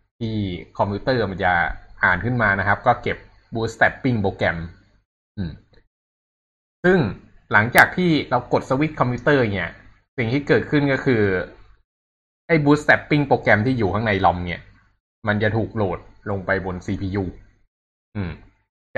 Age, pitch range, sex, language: 20-39, 95-115 Hz, male, Thai